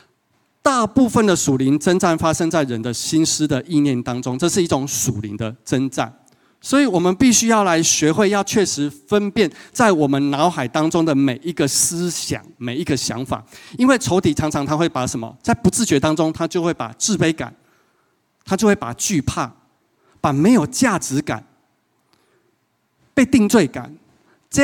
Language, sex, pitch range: Chinese, male, 125-170 Hz